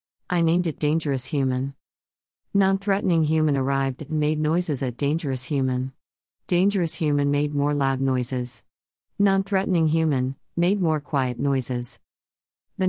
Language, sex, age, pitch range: English, female, 50-69, 130-160 Hz